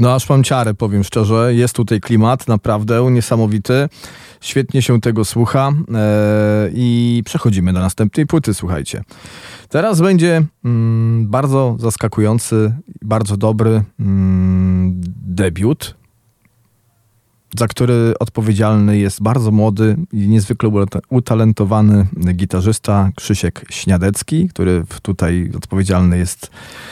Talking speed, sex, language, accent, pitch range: 100 wpm, male, Polish, native, 95-120 Hz